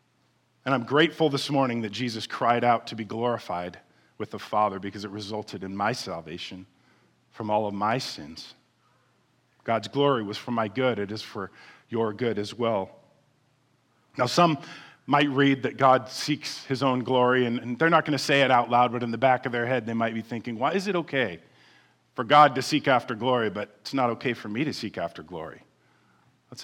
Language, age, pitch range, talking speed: English, 40-59, 110-140 Hz, 205 wpm